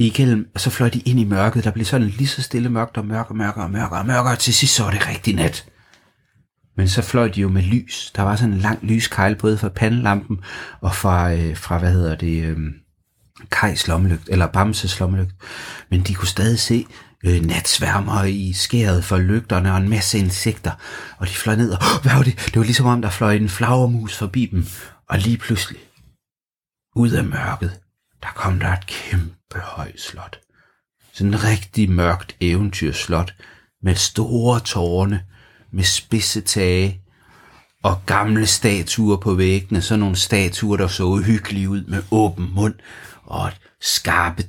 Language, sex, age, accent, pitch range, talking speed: Danish, male, 30-49, native, 90-110 Hz, 180 wpm